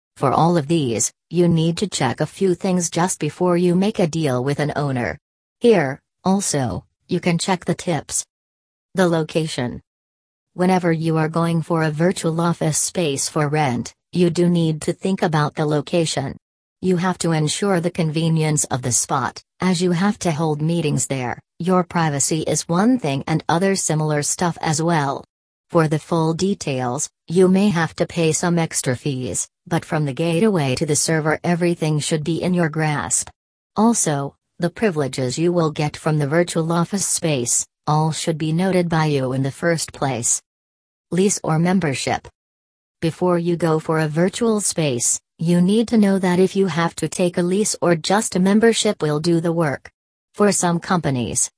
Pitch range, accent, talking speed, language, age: 150-180 Hz, American, 180 wpm, English, 40-59